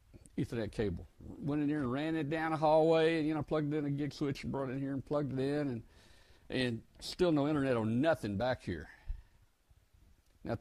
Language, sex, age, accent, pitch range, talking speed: English, male, 60-79, American, 100-145 Hz, 225 wpm